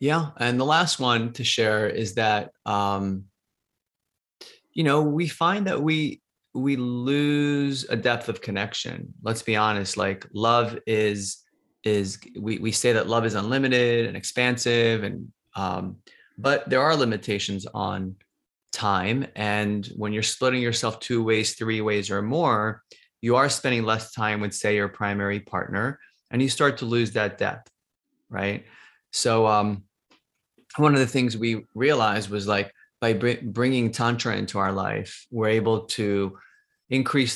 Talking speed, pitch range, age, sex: 155 wpm, 100-125 Hz, 30-49, male